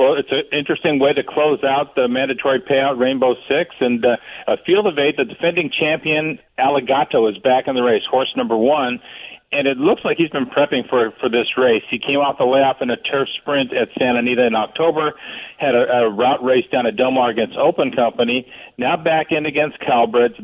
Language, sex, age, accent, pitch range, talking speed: English, male, 50-69, American, 125-145 Hz, 215 wpm